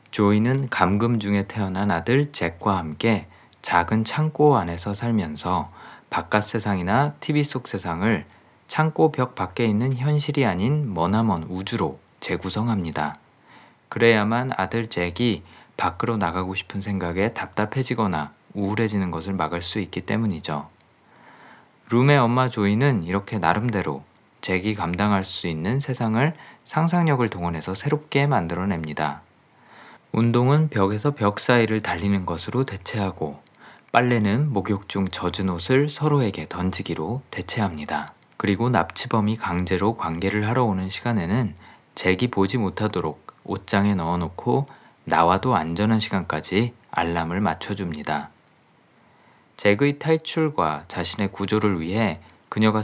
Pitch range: 90-120 Hz